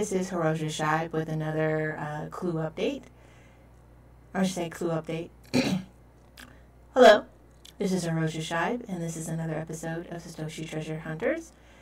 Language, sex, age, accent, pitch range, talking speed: English, female, 30-49, American, 160-190 Hz, 145 wpm